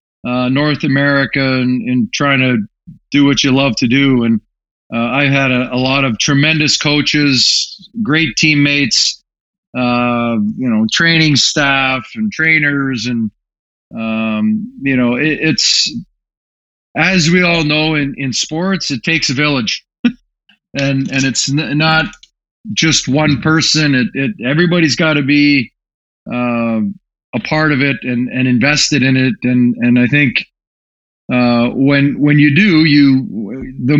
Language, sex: French, male